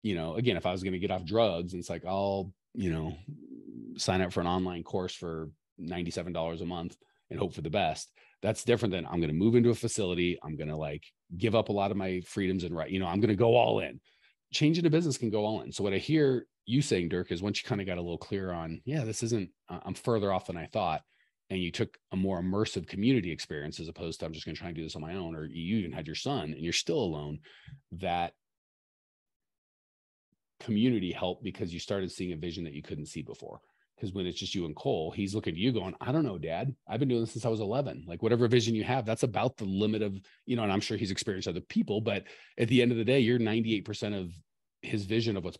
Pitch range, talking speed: 85-115 Hz, 260 wpm